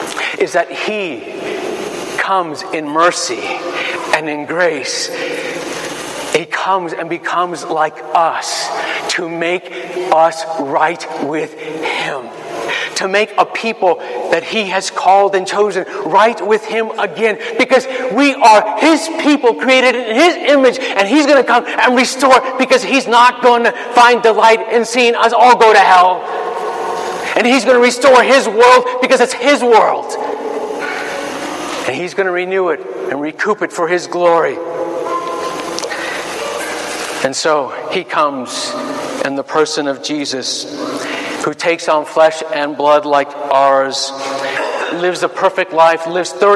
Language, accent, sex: English, American, male